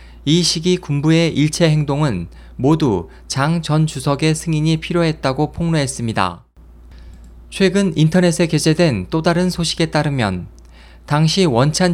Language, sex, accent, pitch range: Korean, male, native, 120-165 Hz